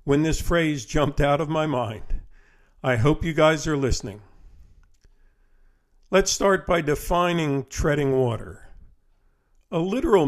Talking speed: 130 wpm